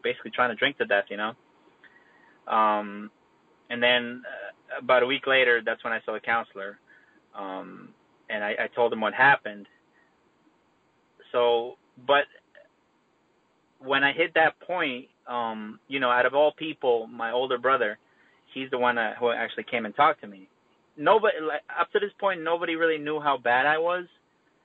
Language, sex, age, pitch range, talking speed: English, male, 20-39, 115-150 Hz, 165 wpm